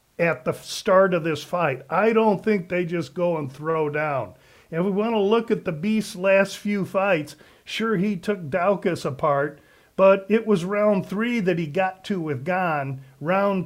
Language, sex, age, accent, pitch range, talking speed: English, male, 50-69, American, 170-205 Hz, 190 wpm